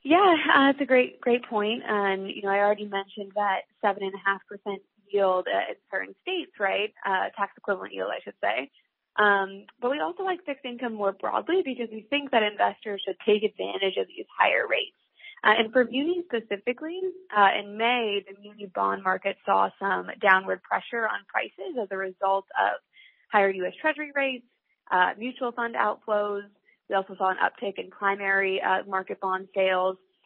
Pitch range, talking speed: 195-255 Hz, 180 wpm